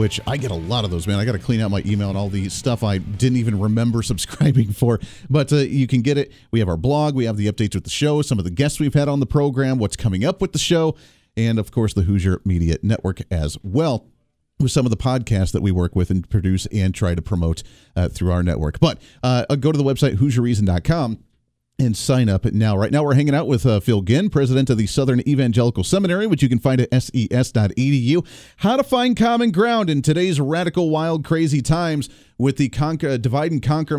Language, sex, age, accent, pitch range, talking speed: English, male, 40-59, American, 110-150 Hz, 230 wpm